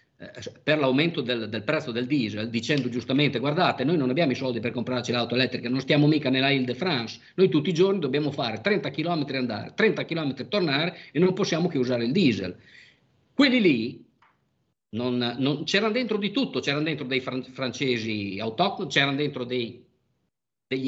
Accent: native